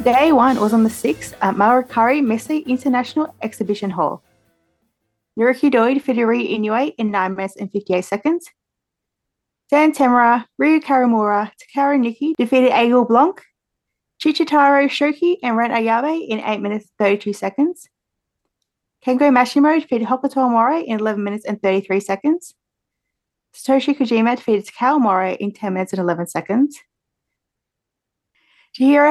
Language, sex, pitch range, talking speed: English, female, 215-275 Hz, 135 wpm